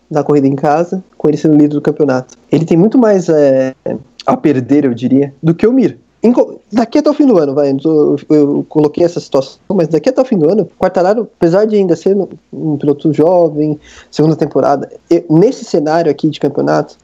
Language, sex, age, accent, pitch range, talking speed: Portuguese, male, 20-39, Brazilian, 145-225 Hz, 215 wpm